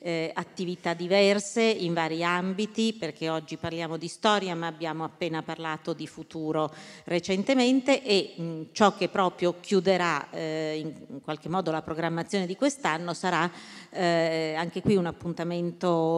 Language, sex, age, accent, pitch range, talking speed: Italian, female, 40-59, native, 160-190 Hz, 140 wpm